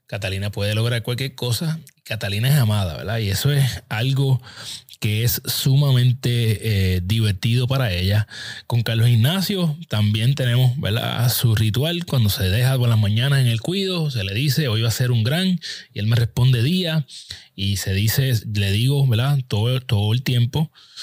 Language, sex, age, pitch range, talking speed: Spanish, male, 30-49, 110-135 Hz, 175 wpm